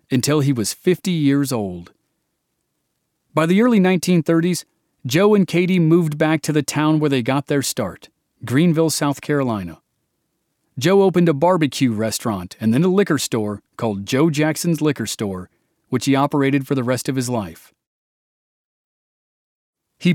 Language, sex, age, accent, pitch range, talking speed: English, male, 40-59, American, 130-165 Hz, 150 wpm